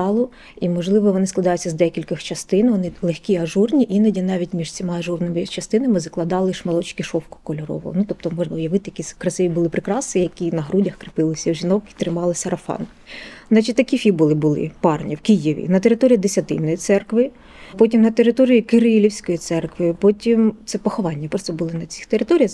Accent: native